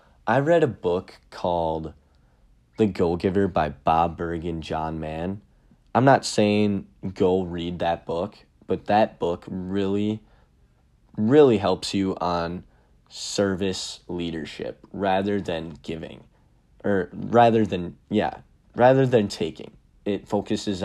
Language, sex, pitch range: English, male, 90-110 Hz